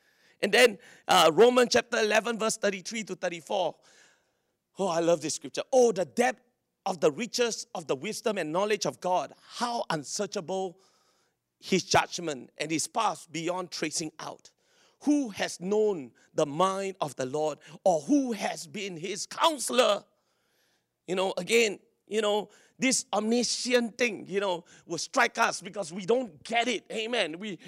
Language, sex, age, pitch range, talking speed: English, male, 40-59, 190-245 Hz, 155 wpm